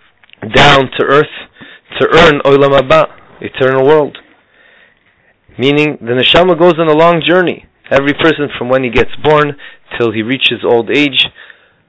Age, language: 30-49, English